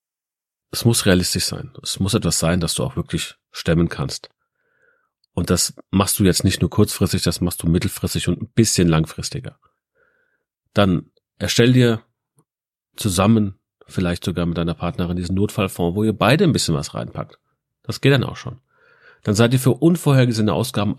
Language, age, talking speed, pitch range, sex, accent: German, 40-59, 170 wpm, 90-130 Hz, male, German